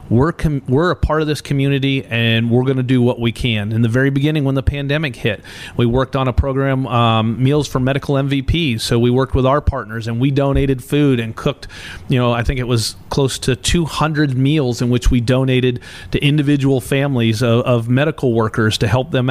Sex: male